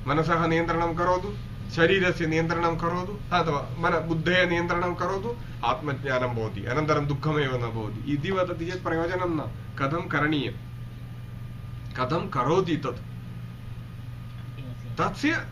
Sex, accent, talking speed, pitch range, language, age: male, Indian, 110 wpm, 120-160 Hz, English, 30-49